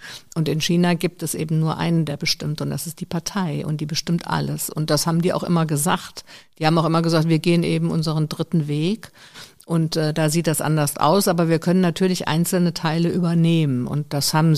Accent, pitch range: German, 150-175 Hz